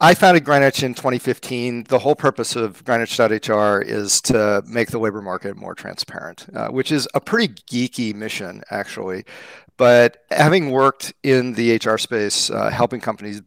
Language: English